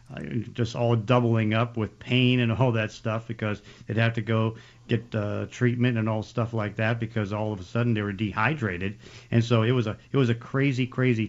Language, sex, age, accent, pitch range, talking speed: English, male, 50-69, American, 110-125 Hz, 220 wpm